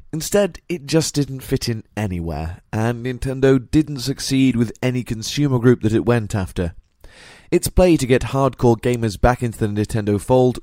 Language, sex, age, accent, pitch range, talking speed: English, male, 20-39, British, 100-130 Hz, 170 wpm